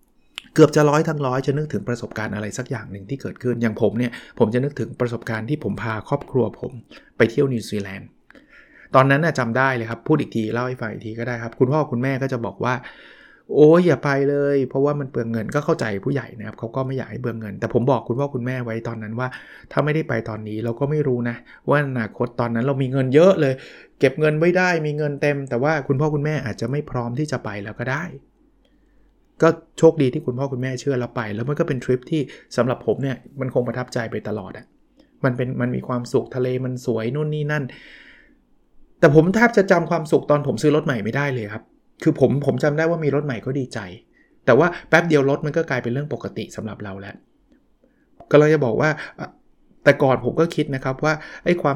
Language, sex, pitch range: Thai, male, 120-150 Hz